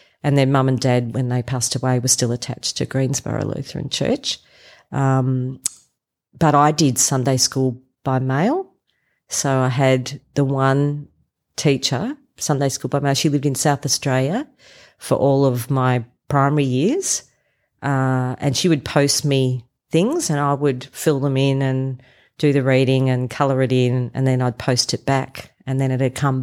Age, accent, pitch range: 40-59, Australian, 130-140 Hz